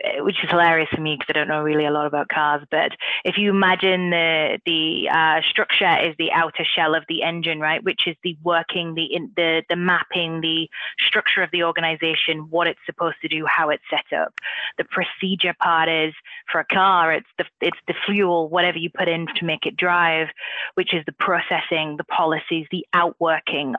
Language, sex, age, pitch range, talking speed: English, female, 20-39, 165-195 Hz, 205 wpm